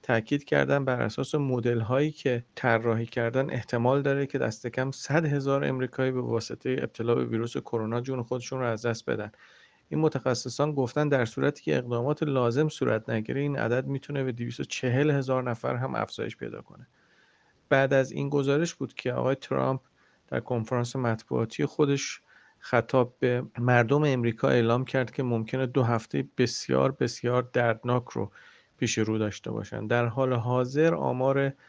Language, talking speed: Persian, 155 wpm